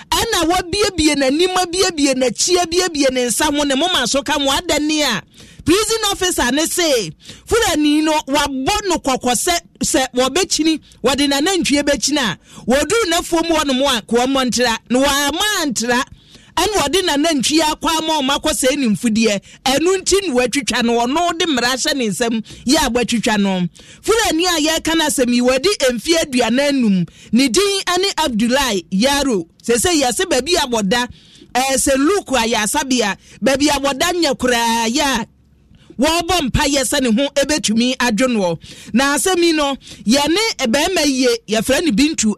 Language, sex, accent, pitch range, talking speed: English, male, Nigerian, 245-325 Hz, 145 wpm